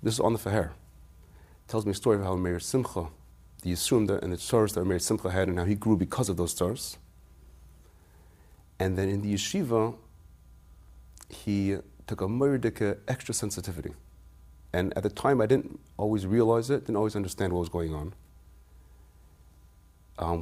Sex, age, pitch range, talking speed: male, 30-49, 75-105 Hz, 175 wpm